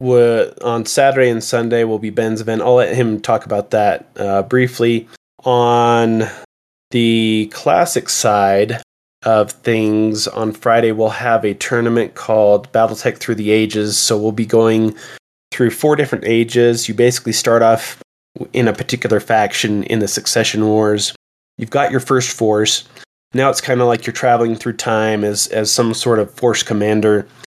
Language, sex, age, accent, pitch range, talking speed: English, male, 20-39, American, 105-120 Hz, 160 wpm